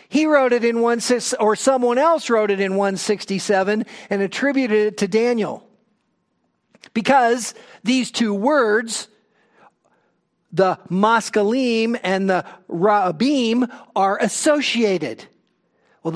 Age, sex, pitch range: 50-69, male, 195-255 Hz